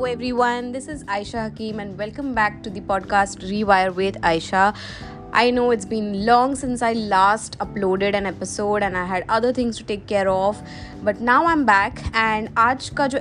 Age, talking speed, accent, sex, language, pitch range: 20-39, 185 wpm, Indian, female, English, 195-245 Hz